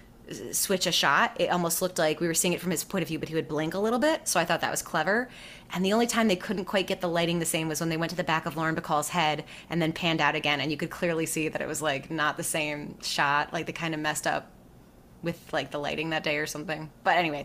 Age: 20-39